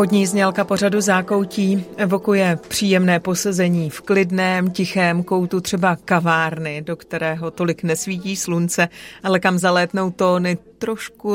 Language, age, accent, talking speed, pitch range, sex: Czech, 30-49, native, 120 wpm, 170-195 Hz, female